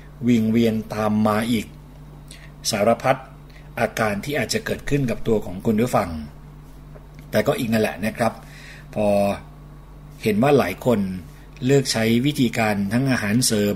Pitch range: 105-130 Hz